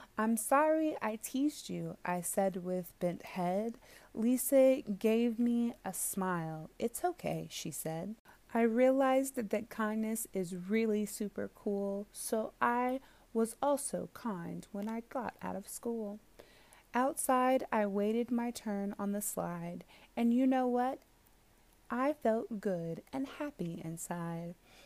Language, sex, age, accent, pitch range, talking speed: English, female, 30-49, American, 190-245 Hz, 135 wpm